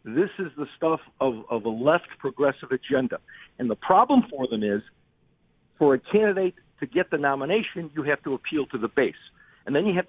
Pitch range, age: 135-185 Hz, 50-69